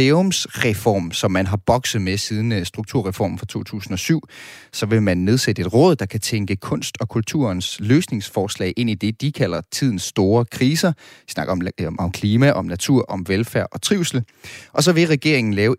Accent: native